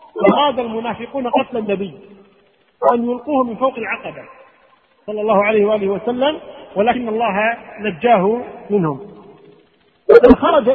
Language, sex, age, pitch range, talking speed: Arabic, male, 50-69, 220-275 Hz, 105 wpm